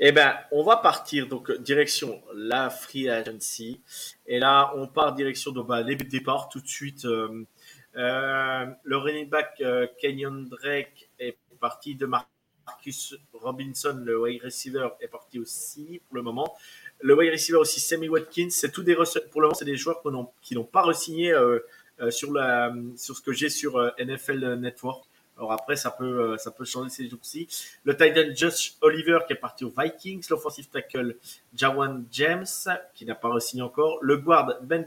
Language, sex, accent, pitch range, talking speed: French, male, French, 125-160 Hz, 190 wpm